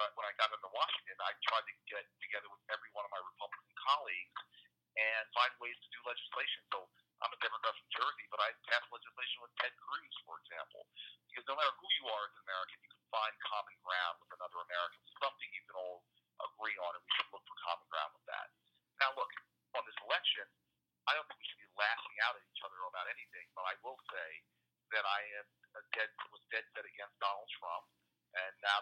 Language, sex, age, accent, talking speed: English, male, 50-69, American, 210 wpm